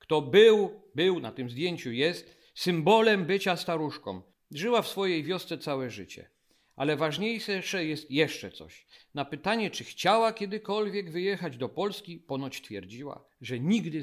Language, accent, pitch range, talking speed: Polish, native, 145-195 Hz, 140 wpm